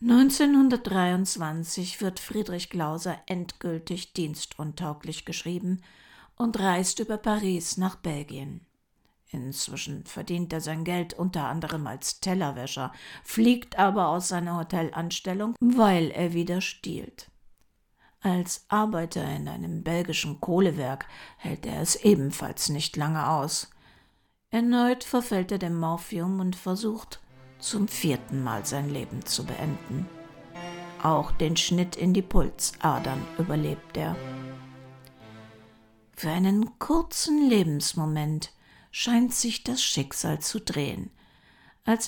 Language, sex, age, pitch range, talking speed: German, female, 60-79, 155-195 Hz, 110 wpm